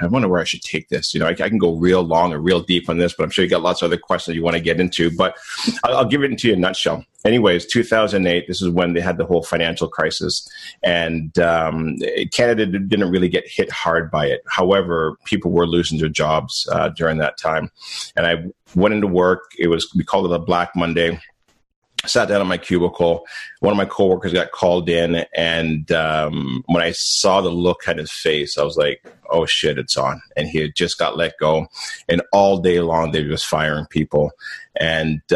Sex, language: male, English